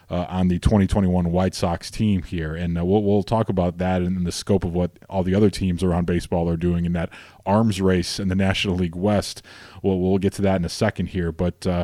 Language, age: English, 30-49